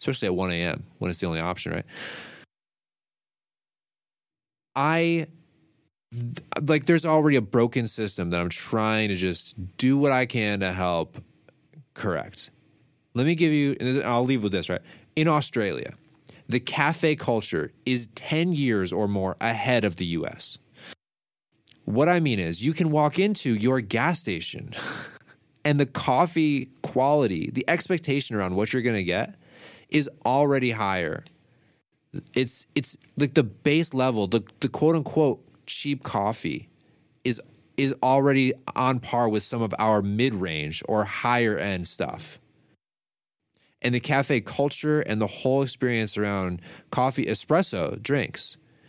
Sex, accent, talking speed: male, American, 145 wpm